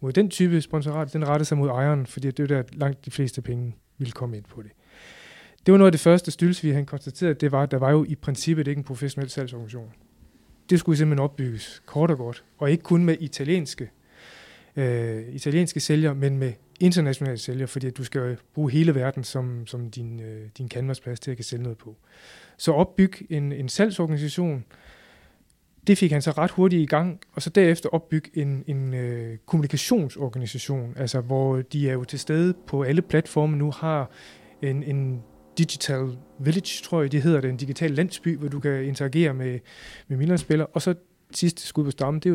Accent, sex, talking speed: native, male, 200 wpm